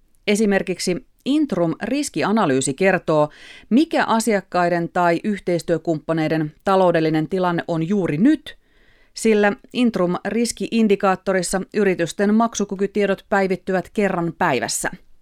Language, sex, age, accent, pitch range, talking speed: Finnish, female, 30-49, native, 160-210 Hz, 75 wpm